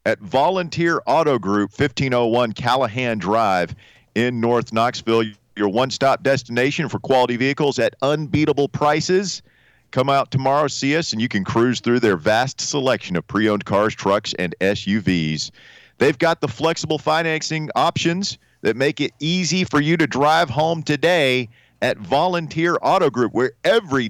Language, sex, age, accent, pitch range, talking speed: English, male, 40-59, American, 110-145 Hz, 150 wpm